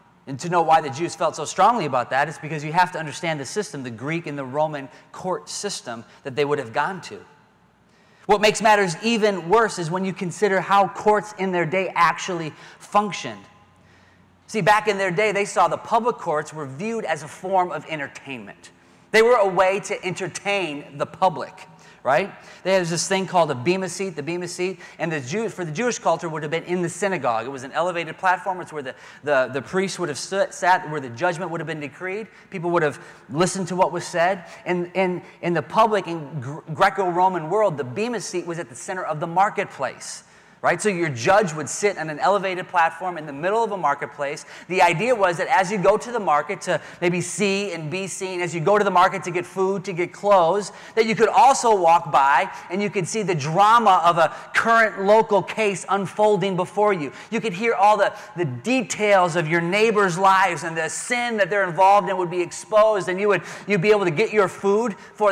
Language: English